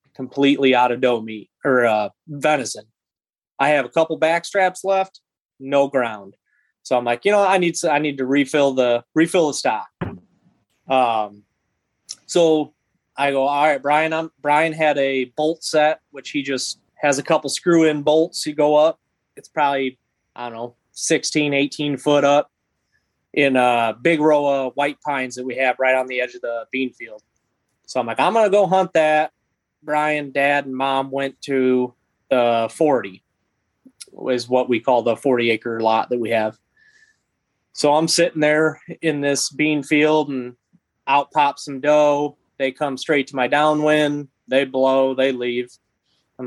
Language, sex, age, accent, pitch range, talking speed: English, male, 30-49, American, 125-155 Hz, 175 wpm